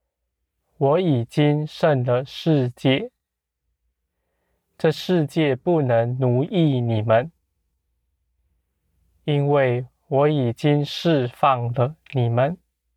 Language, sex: Chinese, male